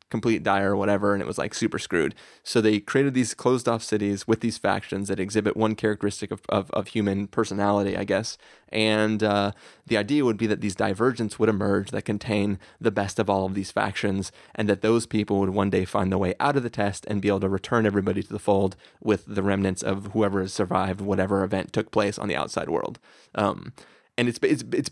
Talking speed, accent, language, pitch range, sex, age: 225 wpm, American, English, 100-115 Hz, male, 30-49